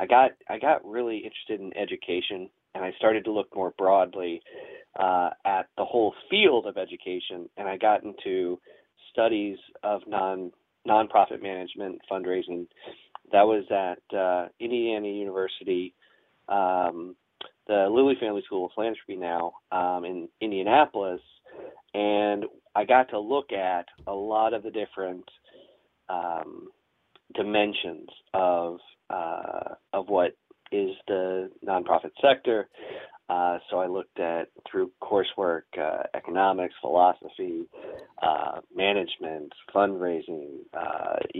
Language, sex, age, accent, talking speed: English, male, 40-59, American, 120 wpm